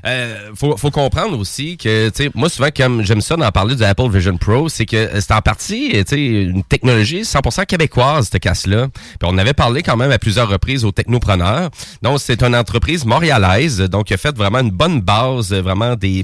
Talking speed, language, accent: 200 wpm, French, Canadian